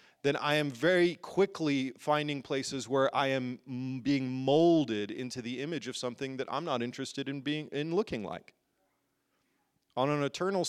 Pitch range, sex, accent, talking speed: 120-150 Hz, male, American, 165 wpm